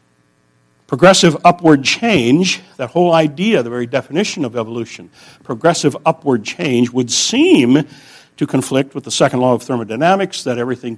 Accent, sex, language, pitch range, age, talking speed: American, male, English, 115-165 Hz, 60-79, 140 wpm